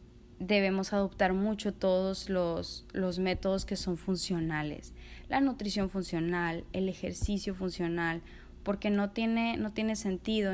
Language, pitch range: Spanish, 180-200 Hz